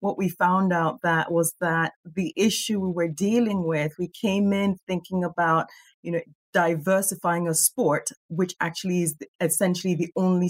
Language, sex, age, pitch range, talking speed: English, female, 30-49, 165-190 Hz, 165 wpm